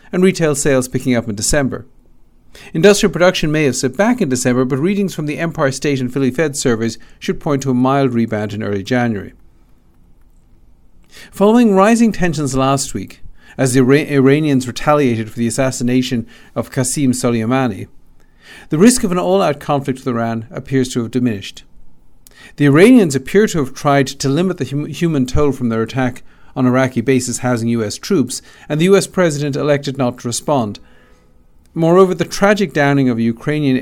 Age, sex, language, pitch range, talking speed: 50-69, male, English, 115-150 Hz, 170 wpm